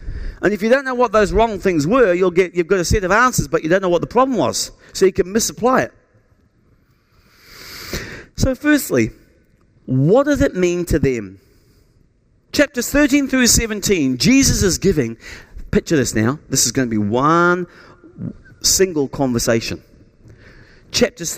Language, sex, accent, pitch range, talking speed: English, male, British, 120-205 Hz, 165 wpm